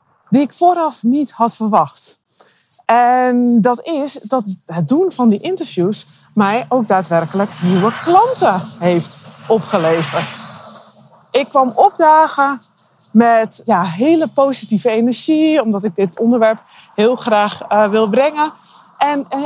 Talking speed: 125 wpm